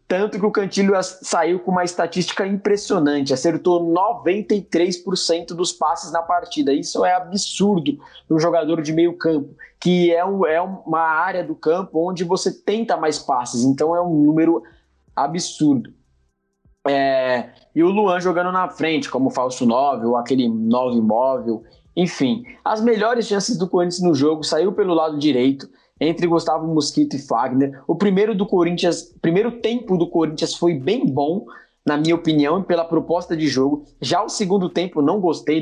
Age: 20-39